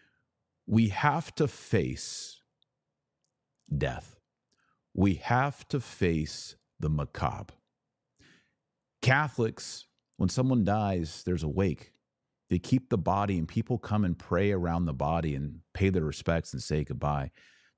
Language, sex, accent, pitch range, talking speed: English, male, American, 85-115 Hz, 125 wpm